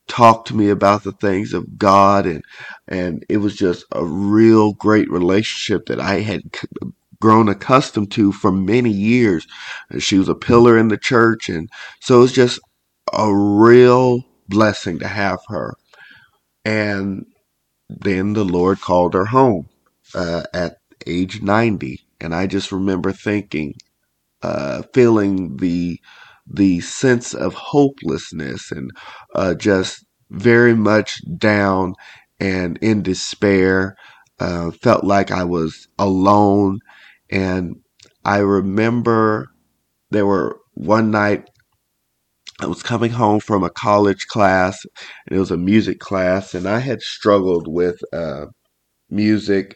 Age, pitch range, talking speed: 50-69, 95-110 Hz, 135 wpm